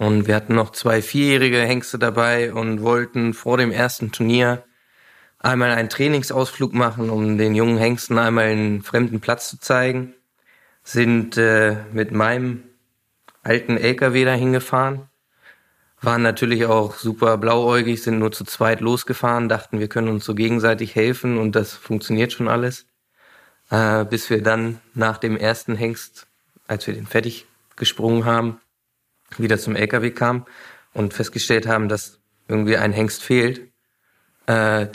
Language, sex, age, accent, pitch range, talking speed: German, male, 20-39, German, 110-120 Hz, 145 wpm